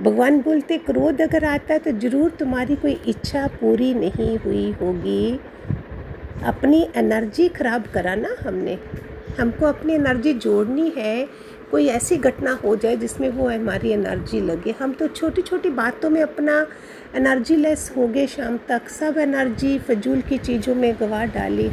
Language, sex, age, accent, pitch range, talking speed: Hindi, female, 50-69, native, 210-280 Hz, 155 wpm